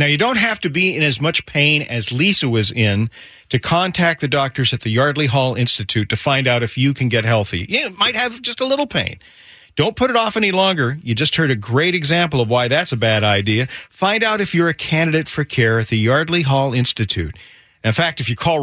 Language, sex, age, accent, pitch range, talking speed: English, male, 40-59, American, 115-150 Hz, 240 wpm